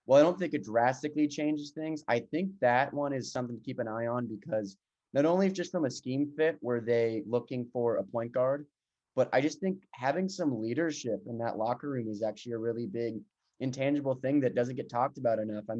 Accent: American